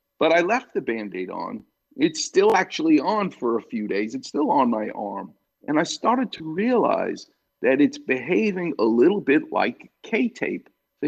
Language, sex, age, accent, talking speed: English, male, 50-69, American, 180 wpm